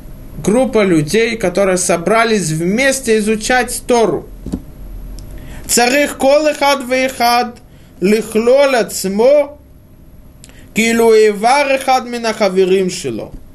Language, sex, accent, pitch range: Russian, male, native, 180-255 Hz